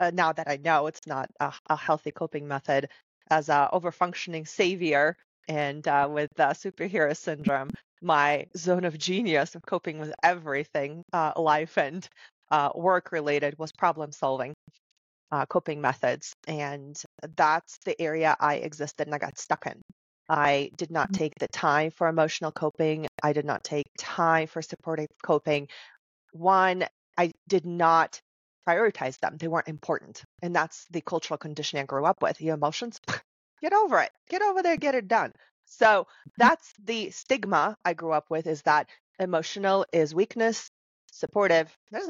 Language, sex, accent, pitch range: English, female, American, 150-195 Hz